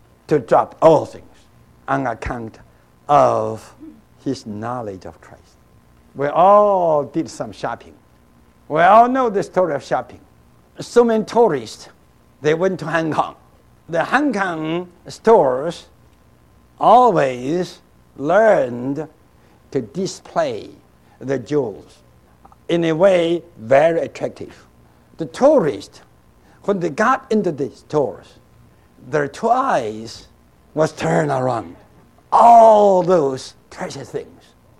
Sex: male